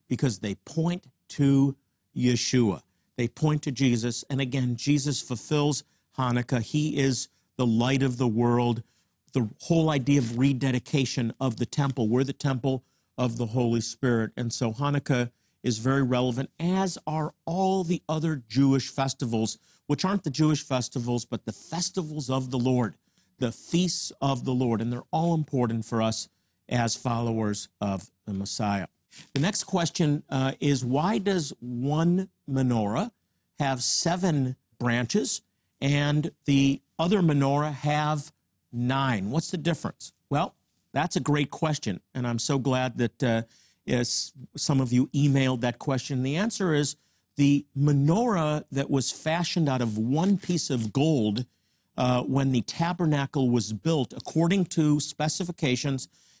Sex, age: male, 50-69